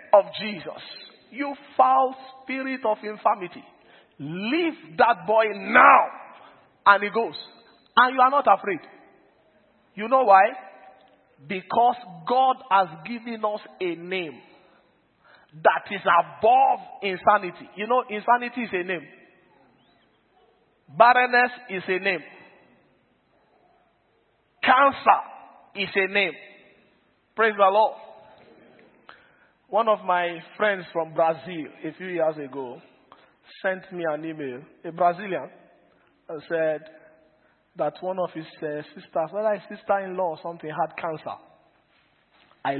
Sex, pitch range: male, 180-250 Hz